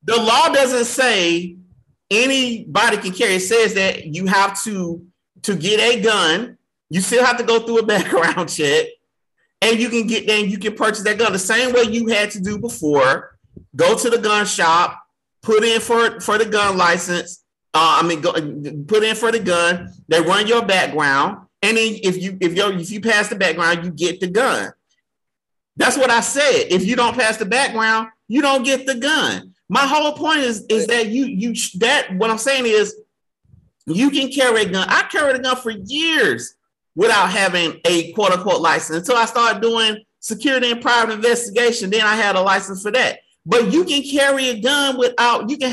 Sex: male